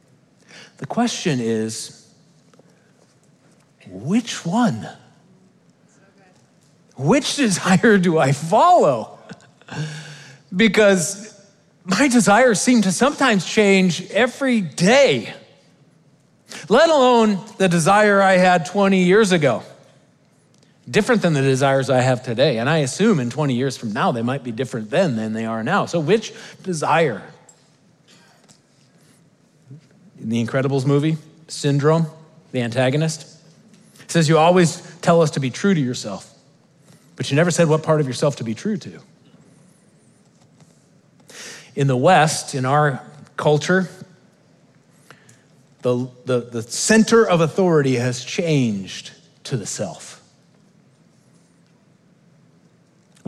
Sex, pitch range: male, 135-195 Hz